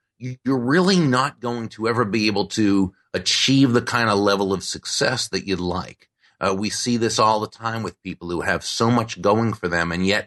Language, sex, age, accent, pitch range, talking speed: English, male, 30-49, American, 100-125 Hz, 215 wpm